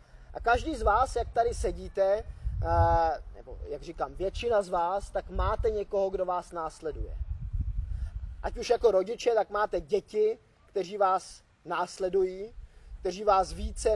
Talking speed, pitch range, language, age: 140 wpm, 170-210 Hz, Czech, 20-39